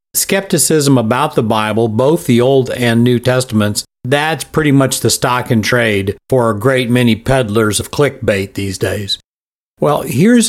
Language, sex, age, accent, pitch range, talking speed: English, male, 60-79, American, 115-145 Hz, 160 wpm